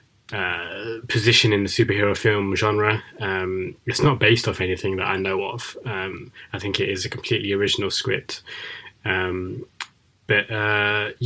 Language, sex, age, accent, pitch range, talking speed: English, male, 20-39, British, 100-115 Hz, 155 wpm